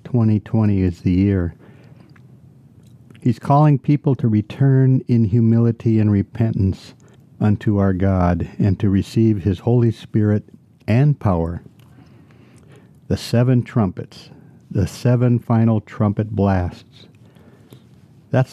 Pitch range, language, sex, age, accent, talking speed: 100-125 Hz, English, male, 60-79, American, 105 wpm